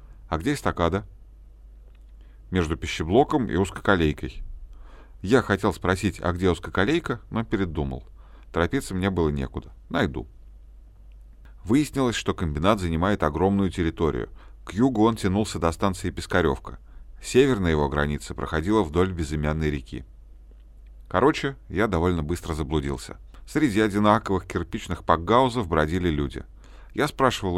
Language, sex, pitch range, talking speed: Russian, male, 75-105 Hz, 115 wpm